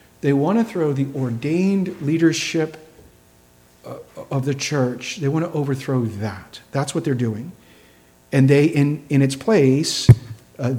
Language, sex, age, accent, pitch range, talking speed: English, male, 50-69, American, 125-160 Hz, 145 wpm